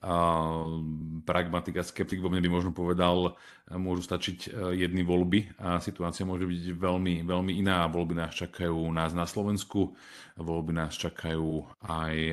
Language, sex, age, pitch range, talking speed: Slovak, male, 30-49, 85-95 Hz, 145 wpm